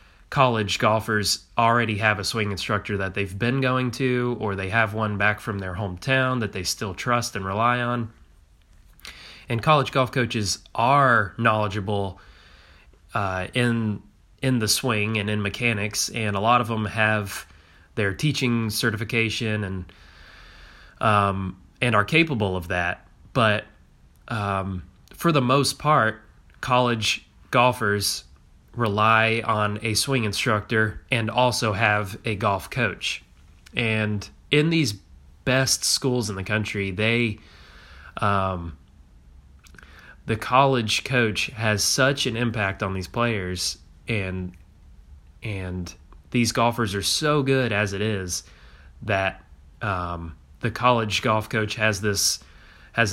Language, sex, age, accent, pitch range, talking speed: English, male, 20-39, American, 90-115 Hz, 130 wpm